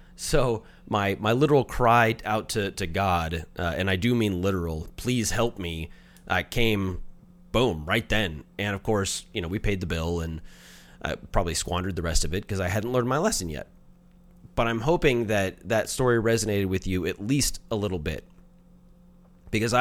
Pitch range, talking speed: 90-120 Hz, 185 wpm